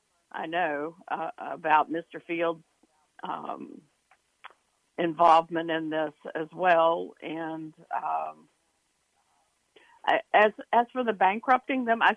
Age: 60-79